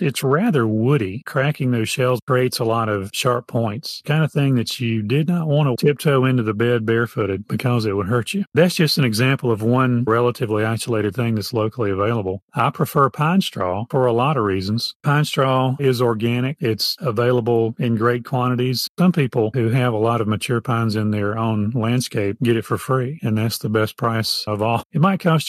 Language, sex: English, male